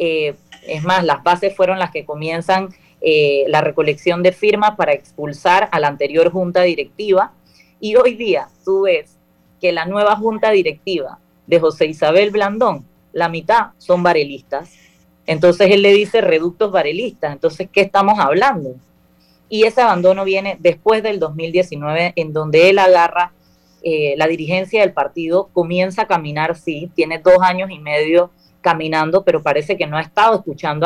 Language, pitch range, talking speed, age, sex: Spanish, 155-195 Hz, 160 wpm, 20-39, female